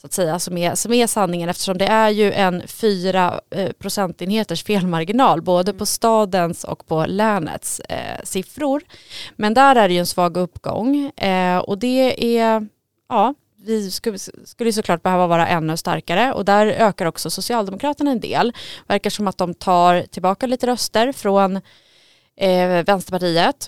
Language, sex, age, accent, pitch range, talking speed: Swedish, female, 30-49, native, 175-220 Hz, 145 wpm